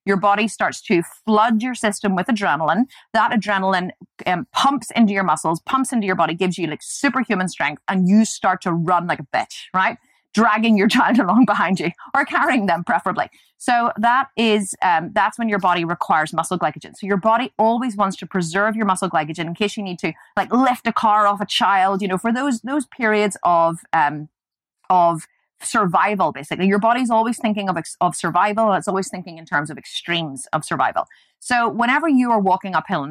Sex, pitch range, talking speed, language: female, 175-225 Hz, 200 wpm, English